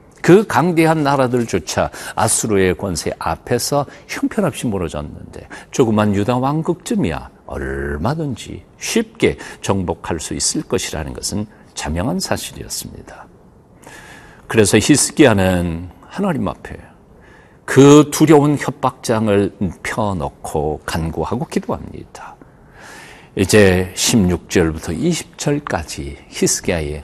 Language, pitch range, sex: Korean, 90-145 Hz, male